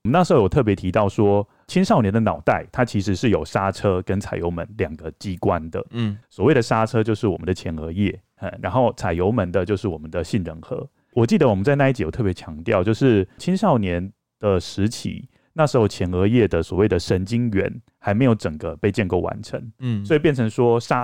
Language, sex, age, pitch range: Chinese, male, 30-49, 95-120 Hz